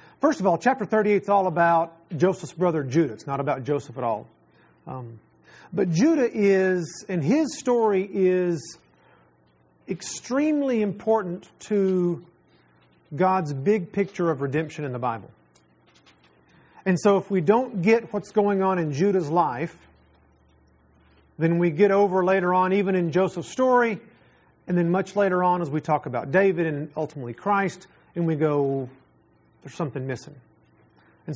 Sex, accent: male, American